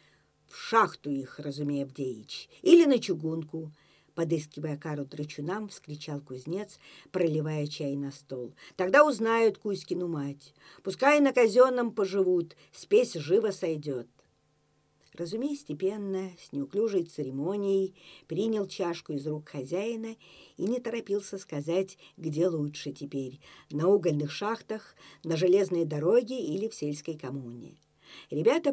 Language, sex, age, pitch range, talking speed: Russian, female, 50-69, 150-215 Hz, 115 wpm